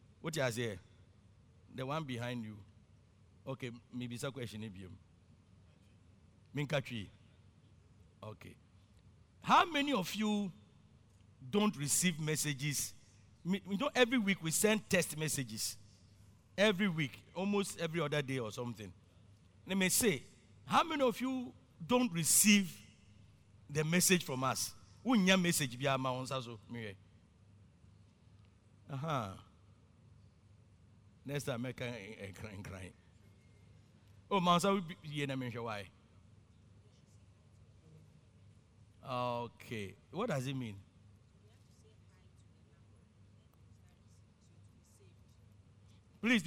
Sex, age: male, 50-69